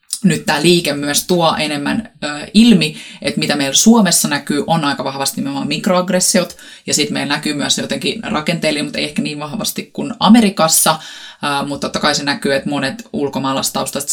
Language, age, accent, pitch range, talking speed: Finnish, 20-39, native, 150-215 Hz, 170 wpm